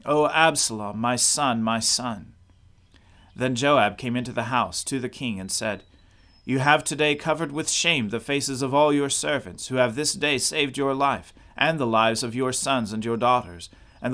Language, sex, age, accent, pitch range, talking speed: English, male, 40-59, American, 95-135 Hz, 195 wpm